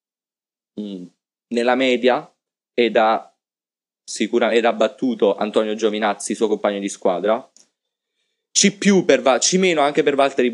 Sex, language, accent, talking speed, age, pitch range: male, Italian, native, 100 wpm, 20-39, 110-140 Hz